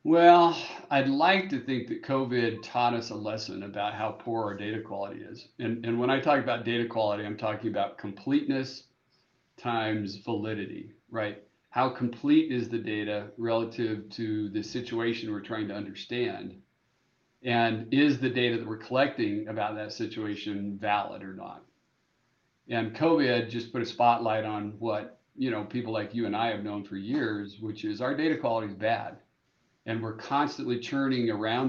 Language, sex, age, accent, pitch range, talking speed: English, male, 50-69, American, 105-120 Hz, 170 wpm